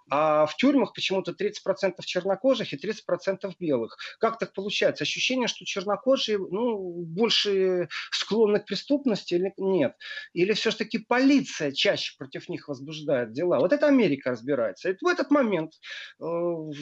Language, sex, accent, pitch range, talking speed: Russian, male, native, 170-230 Hz, 140 wpm